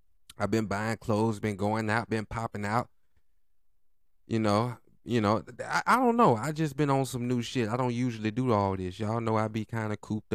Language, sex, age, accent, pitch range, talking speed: English, male, 20-39, American, 80-130 Hz, 220 wpm